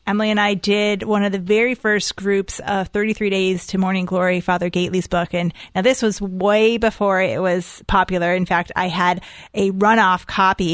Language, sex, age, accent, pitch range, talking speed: English, female, 30-49, American, 185-210 Hz, 195 wpm